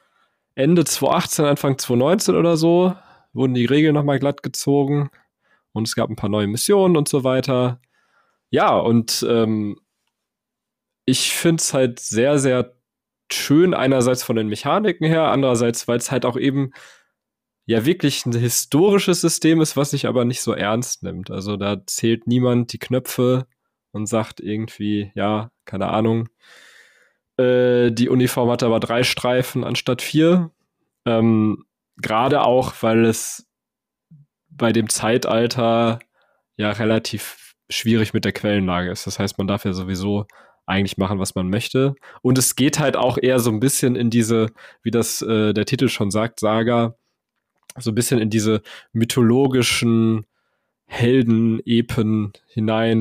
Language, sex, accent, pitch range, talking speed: German, male, German, 110-135 Hz, 145 wpm